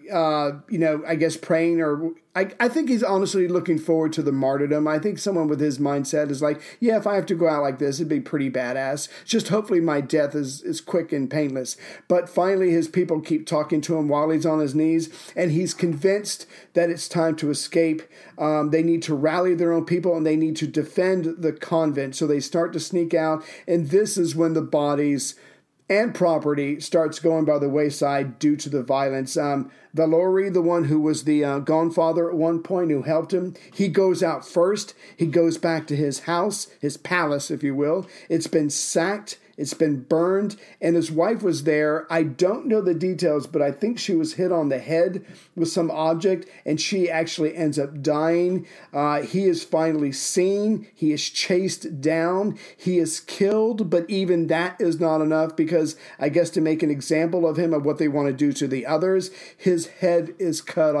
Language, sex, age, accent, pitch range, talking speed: English, male, 40-59, American, 150-180 Hz, 210 wpm